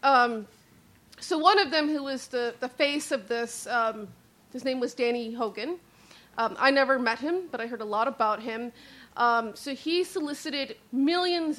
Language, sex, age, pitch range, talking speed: English, female, 40-59, 230-275 Hz, 180 wpm